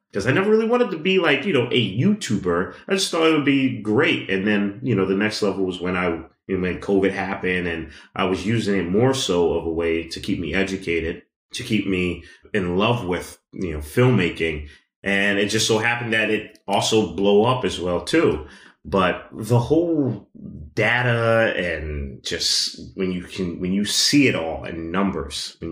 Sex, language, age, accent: male, English, 30-49, American